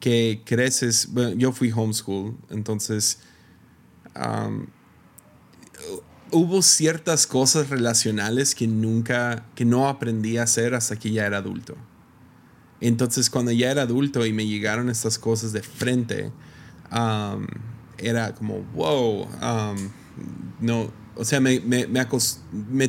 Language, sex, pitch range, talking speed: Spanish, male, 110-125 Hz, 115 wpm